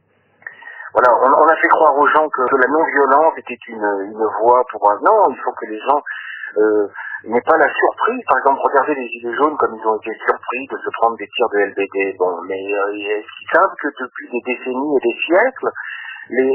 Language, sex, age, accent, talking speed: French, male, 50-69, French, 215 wpm